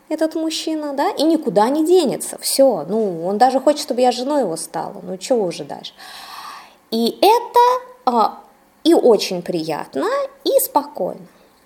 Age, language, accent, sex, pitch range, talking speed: 20-39, Russian, native, female, 220-315 Hz, 145 wpm